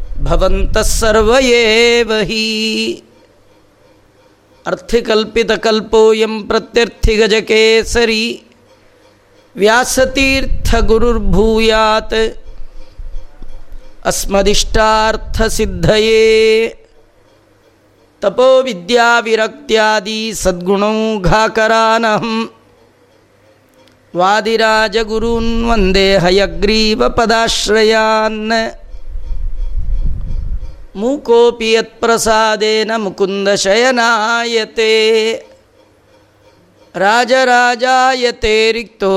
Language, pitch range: Kannada, 195-230 Hz